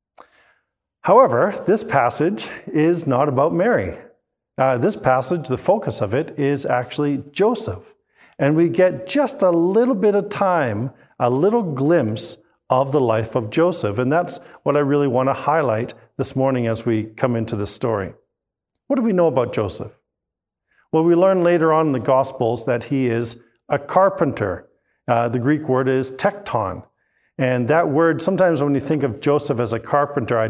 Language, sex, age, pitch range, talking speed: English, male, 40-59, 125-170 Hz, 175 wpm